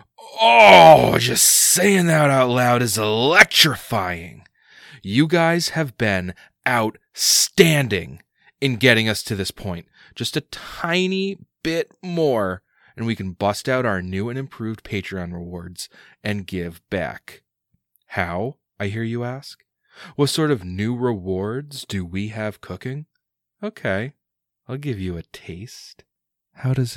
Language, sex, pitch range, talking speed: English, male, 95-135 Hz, 135 wpm